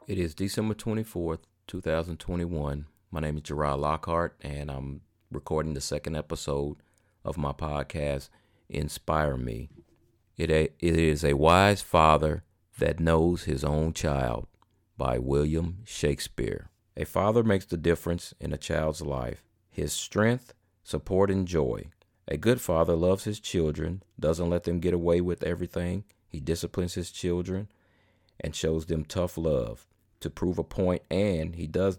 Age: 40-59